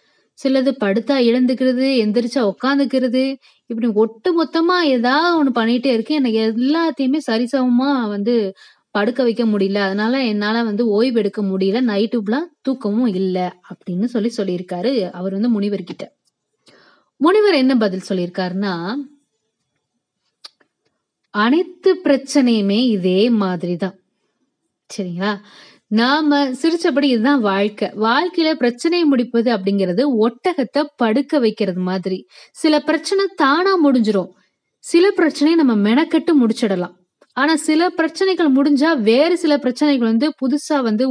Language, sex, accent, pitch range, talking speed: Tamil, female, native, 215-290 Hz, 105 wpm